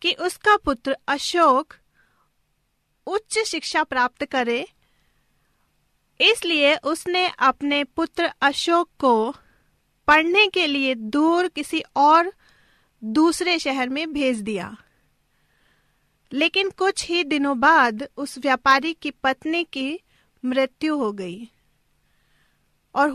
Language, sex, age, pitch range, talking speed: Hindi, female, 40-59, 260-345 Hz, 100 wpm